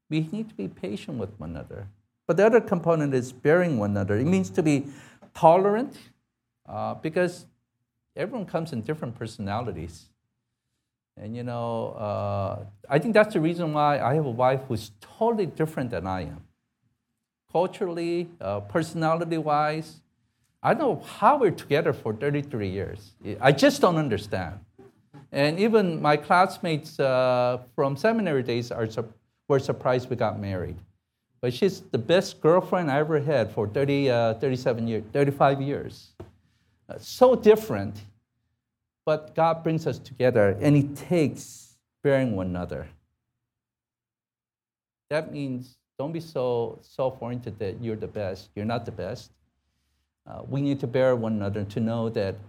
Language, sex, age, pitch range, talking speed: English, male, 50-69, 110-155 Hz, 150 wpm